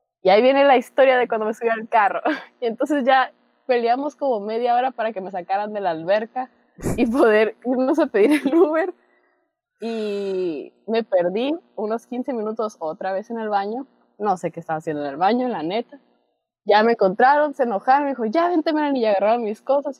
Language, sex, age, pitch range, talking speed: Spanish, female, 20-39, 215-290 Hz, 200 wpm